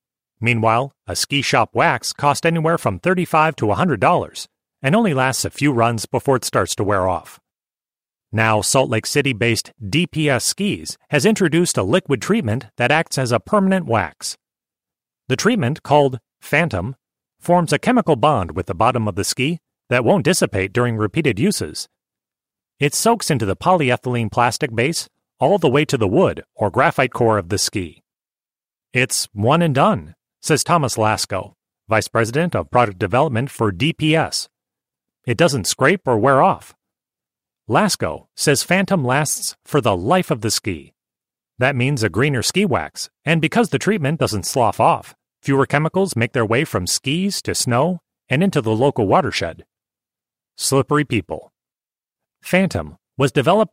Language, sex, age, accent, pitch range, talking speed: English, male, 30-49, American, 110-160 Hz, 160 wpm